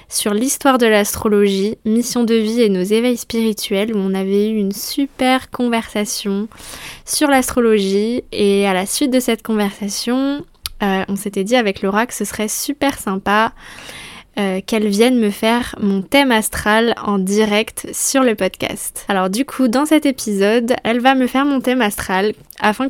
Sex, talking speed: female, 170 wpm